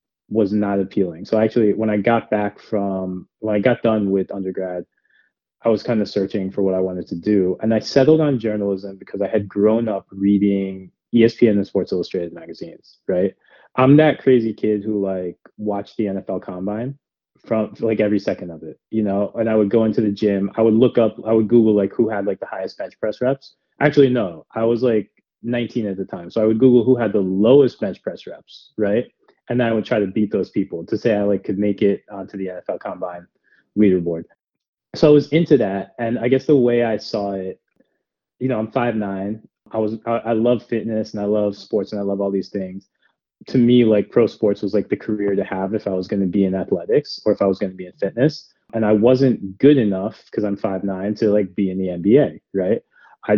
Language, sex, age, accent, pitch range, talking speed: English, male, 20-39, American, 100-115 Hz, 230 wpm